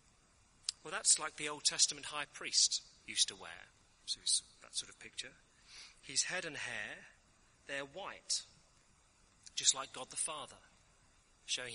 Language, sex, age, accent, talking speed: English, male, 30-49, British, 145 wpm